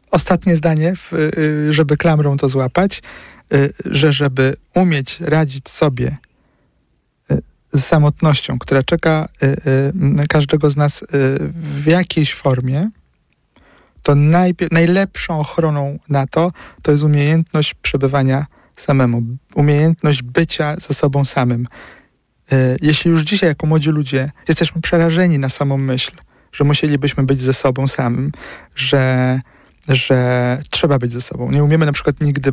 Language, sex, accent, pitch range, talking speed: Polish, male, native, 135-160 Hz, 120 wpm